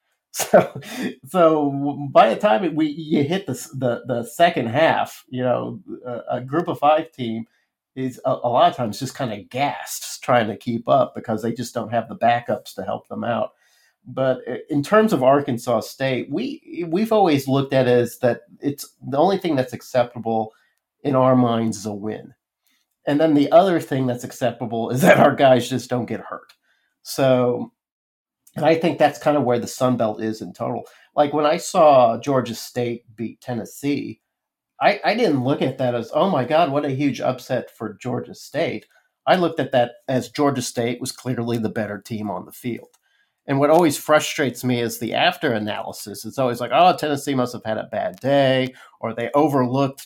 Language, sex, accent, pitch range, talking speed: English, male, American, 120-145 Hz, 200 wpm